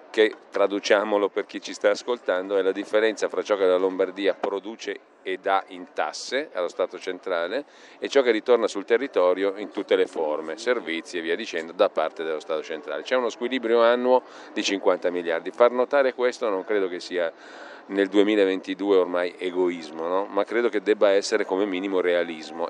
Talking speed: 180 wpm